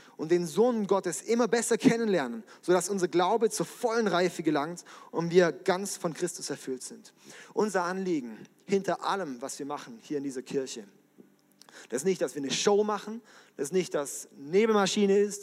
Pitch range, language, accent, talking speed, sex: 165-210 Hz, German, German, 180 wpm, male